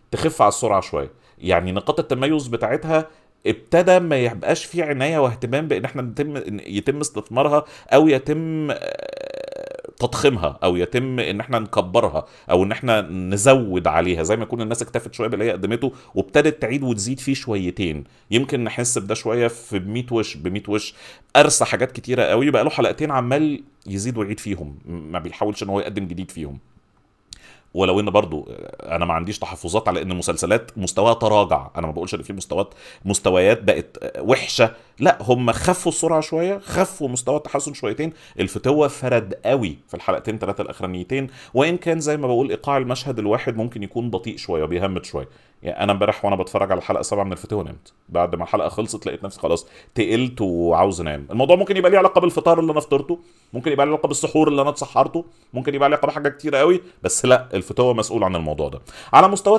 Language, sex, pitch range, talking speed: Arabic, male, 100-145 Hz, 180 wpm